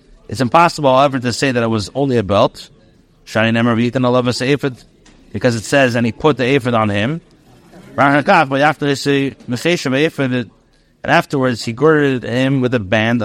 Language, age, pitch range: English, 30-49, 120-150 Hz